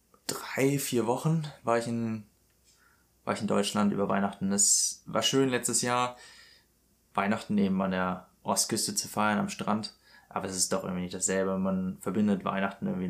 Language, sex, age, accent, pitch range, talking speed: German, male, 20-39, German, 95-110 Hz, 170 wpm